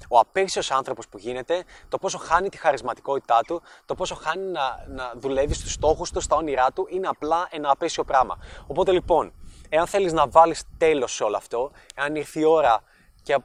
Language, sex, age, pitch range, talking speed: Greek, male, 20-39, 135-180 Hz, 190 wpm